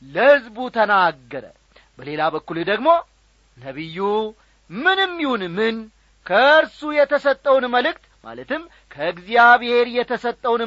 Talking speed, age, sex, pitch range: 85 wpm, 40-59, male, 180-275 Hz